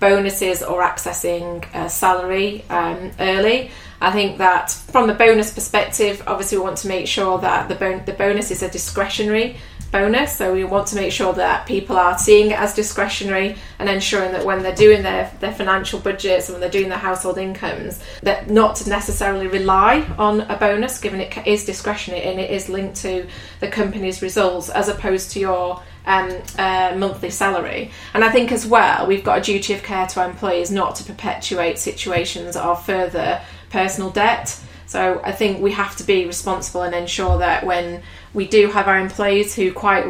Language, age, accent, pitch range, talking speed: English, 30-49, British, 185-205 Hz, 190 wpm